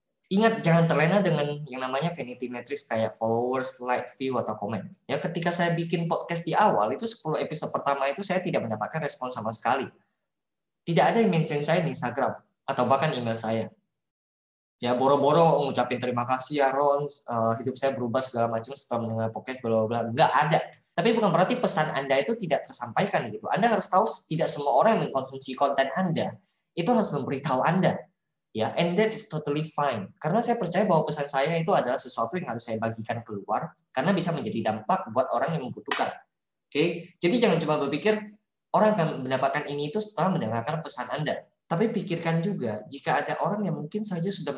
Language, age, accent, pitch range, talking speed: Indonesian, 20-39, native, 115-170 Hz, 180 wpm